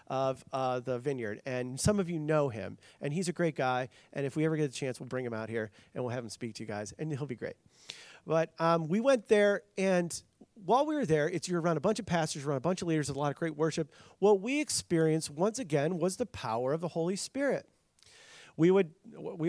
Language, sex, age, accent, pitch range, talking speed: English, male, 40-59, American, 155-210 Hz, 250 wpm